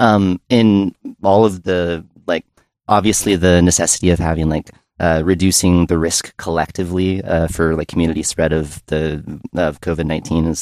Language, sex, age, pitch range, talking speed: English, male, 30-49, 80-100 Hz, 155 wpm